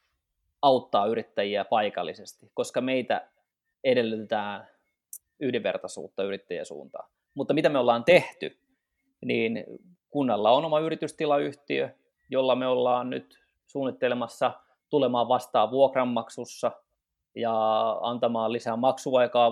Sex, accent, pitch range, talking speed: male, native, 115-140 Hz, 95 wpm